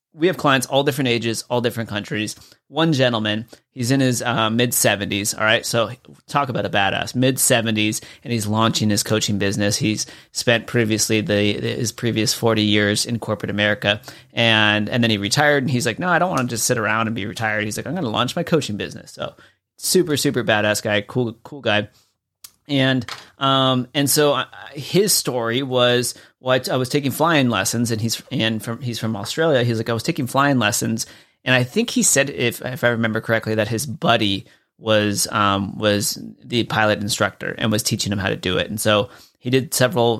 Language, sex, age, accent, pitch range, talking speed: English, male, 30-49, American, 105-130 Hz, 205 wpm